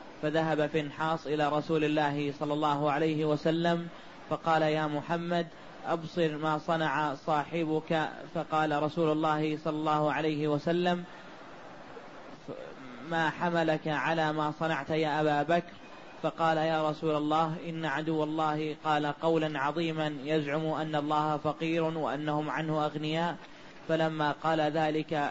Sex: male